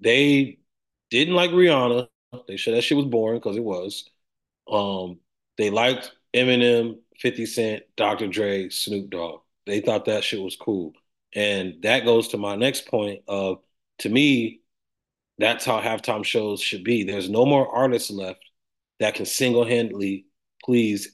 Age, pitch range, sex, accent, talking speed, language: 30-49, 100-120 Hz, male, American, 155 wpm, English